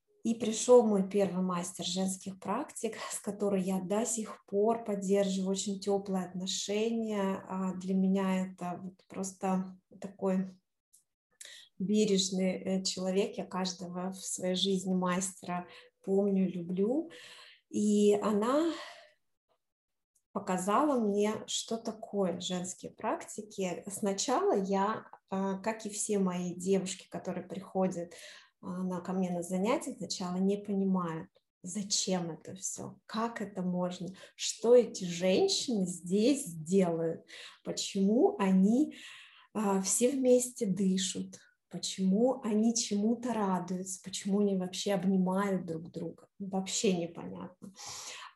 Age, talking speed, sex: 20-39, 105 wpm, female